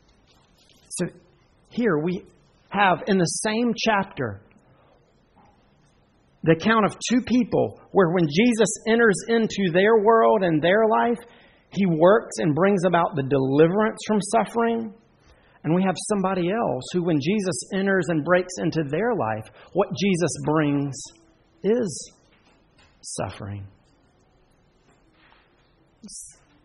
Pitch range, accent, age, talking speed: 130-185 Hz, American, 50-69, 115 wpm